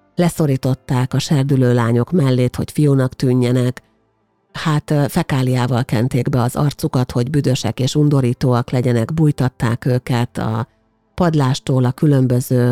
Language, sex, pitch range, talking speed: Hungarian, female, 125-150 Hz, 120 wpm